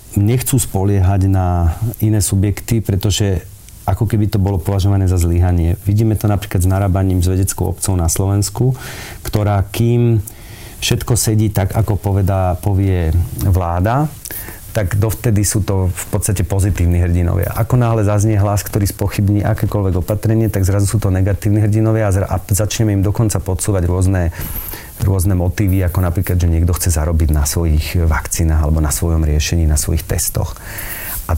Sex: male